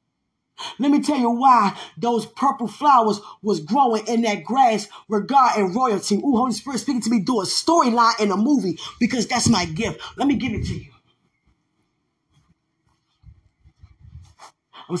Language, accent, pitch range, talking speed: English, American, 210-275 Hz, 155 wpm